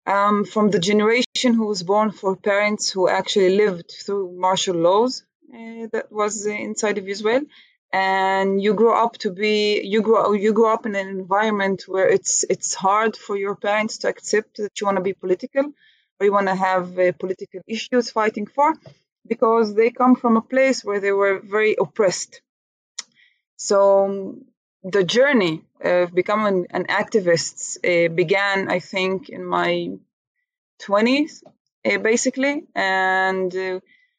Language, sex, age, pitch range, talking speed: English, female, 20-39, 190-225 Hz, 155 wpm